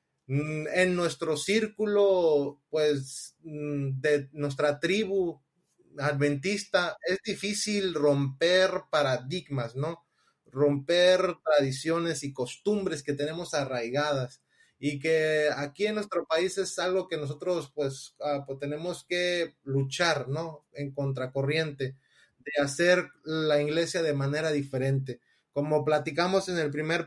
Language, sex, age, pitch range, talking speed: Spanish, male, 30-49, 140-175 Hz, 115 wpm